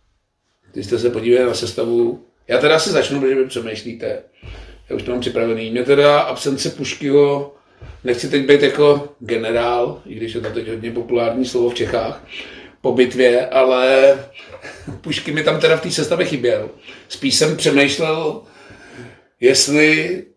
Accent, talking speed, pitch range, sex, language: native, 155 wpm, 125-140 Hz, male, Czech